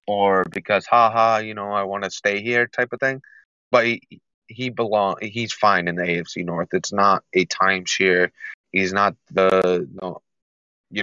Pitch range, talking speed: 95-115 Hz, 175 wpm